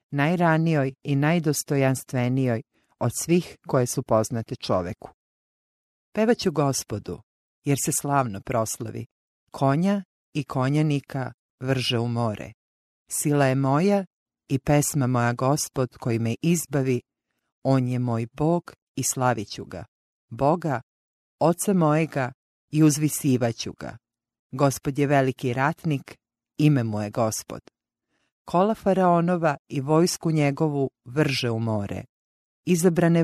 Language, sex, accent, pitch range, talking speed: English, female, Croatian, 120-155 Hz, 110 wpm